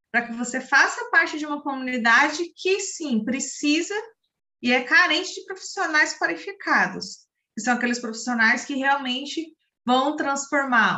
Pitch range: 230-305 Hz